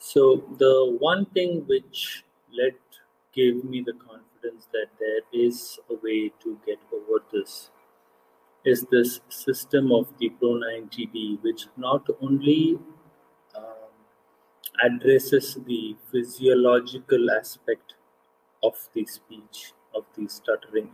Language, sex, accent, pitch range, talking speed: English, male, Indian, 110-155 Hz, 115 wpm